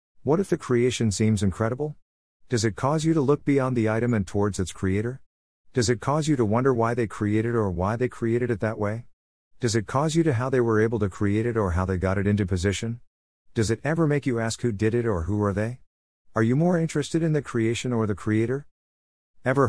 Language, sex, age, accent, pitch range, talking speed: English, male, 50-69, American, 90-130 Hz, 240 wpm